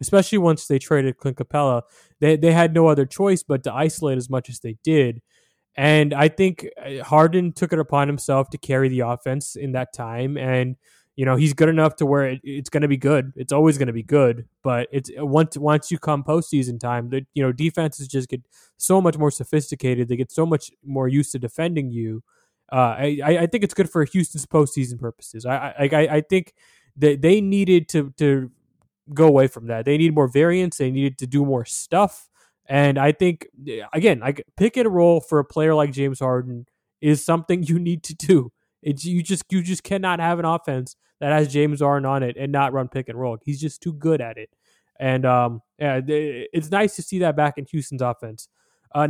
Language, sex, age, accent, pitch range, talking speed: English, male, 20-39, American, 130-160 Hz, 215 wpm